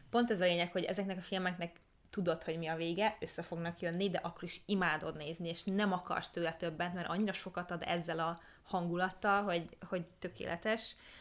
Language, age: Hungarian, 20-39